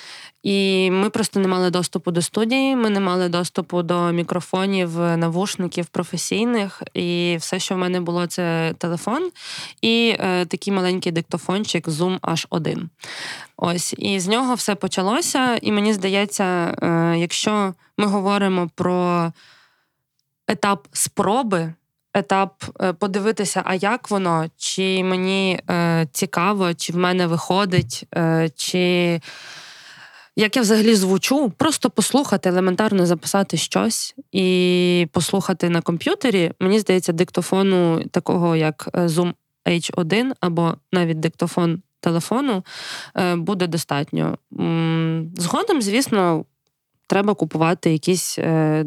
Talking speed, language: 115 wpm, Ukrainian